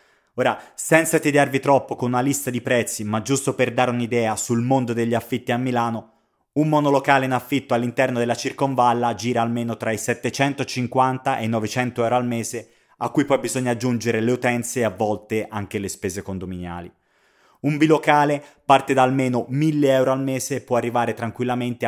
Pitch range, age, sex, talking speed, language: 115-135 Hz, 30-49, male, 180 wpm, Italian